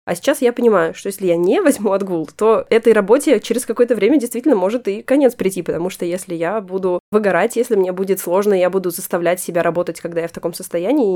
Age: 20-39